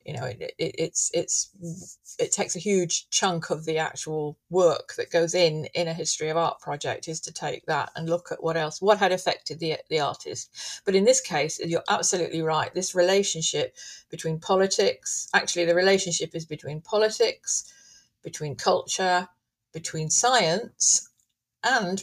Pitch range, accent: 160-200 Hz, British